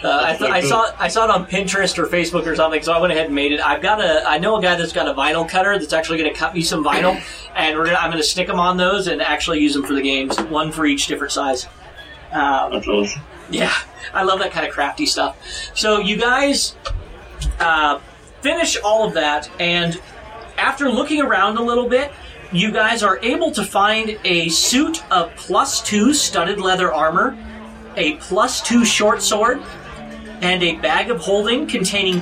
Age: 30-49